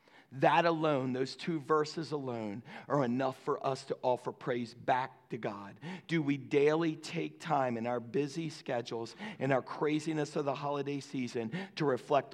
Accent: American